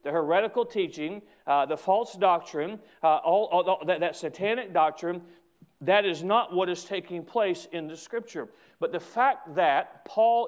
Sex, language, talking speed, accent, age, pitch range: male, English, 170 wpm, American, 40-59, 150-200 Hz